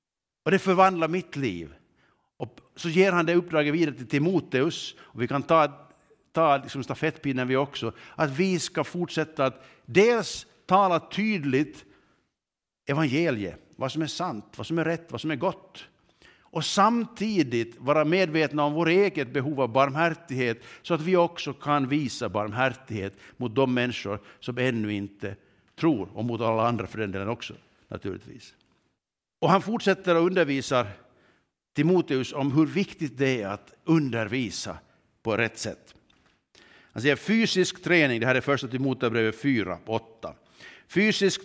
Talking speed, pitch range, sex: 150 wpm, 125-170 Hz, male